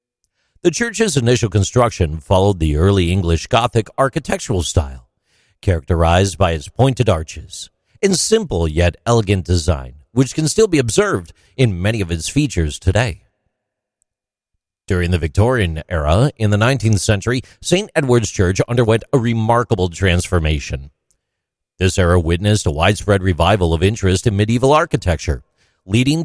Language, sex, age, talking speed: English, male, 50-69, 135 wpm